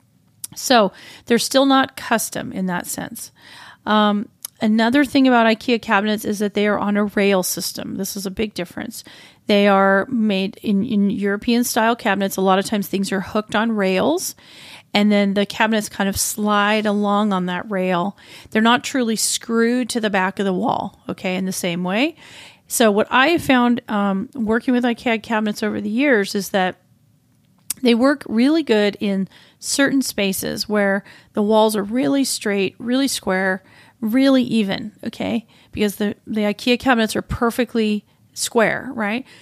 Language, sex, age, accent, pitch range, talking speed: English, female, 40-59, American, 200-245 Hz, 170 wpm